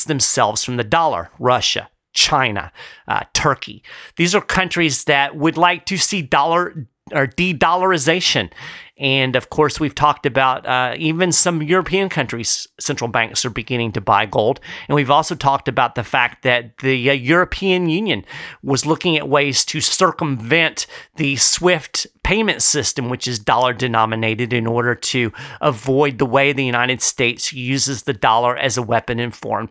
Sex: male